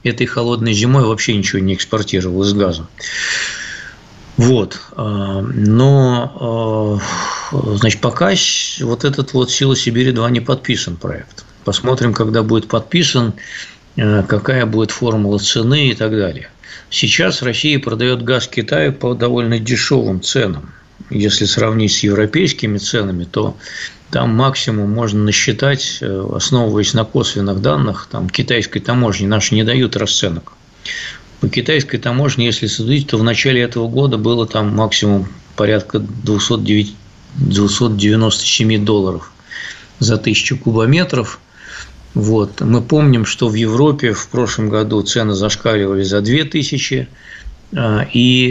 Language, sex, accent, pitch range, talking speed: Russian, male, native, 105-130 Hz, 120 wpm